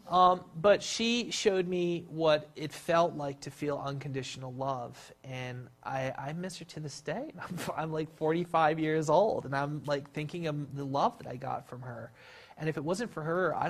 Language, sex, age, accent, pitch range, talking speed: English, male, 30-49, American, 130-160 Hz, 200 wpm